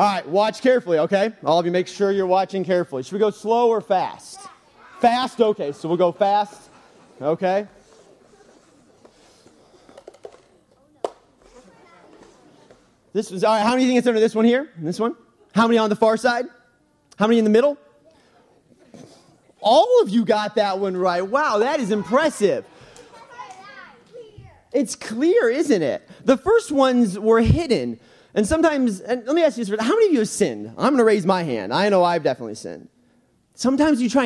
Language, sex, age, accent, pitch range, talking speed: English, male, 30-49, American, 180-240 Hz, 170 wpm